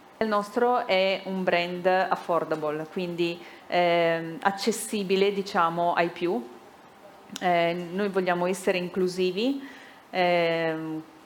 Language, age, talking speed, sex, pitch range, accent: Italian, 30-49, 95 wpm, female, 165-195 Hz, native